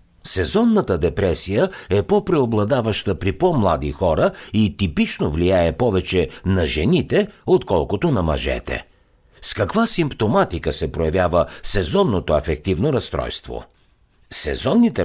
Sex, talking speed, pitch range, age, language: male, 100 wpm, 80-125 Hz, 60-79, Bulgarian